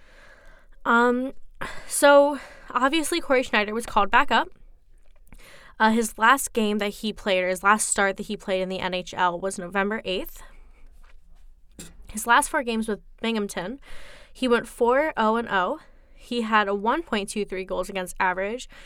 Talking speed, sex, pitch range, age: 145 wpm, female, 190-240 Hz, 10-29